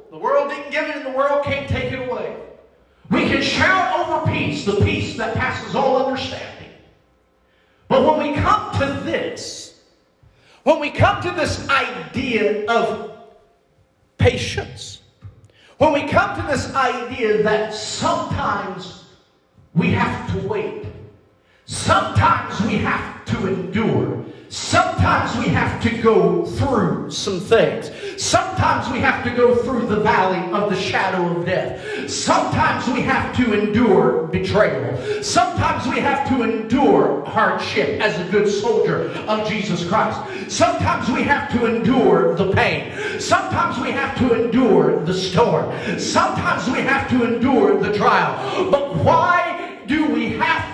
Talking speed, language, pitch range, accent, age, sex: 140 wpm, English, 225-330 Hz, American, 40-59, male